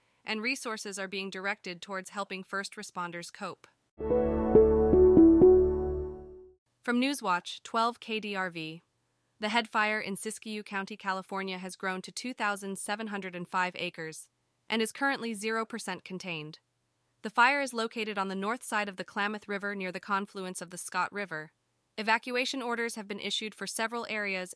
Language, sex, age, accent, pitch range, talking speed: English, female, 20-39, American, 175-220 Hz, 140 wpm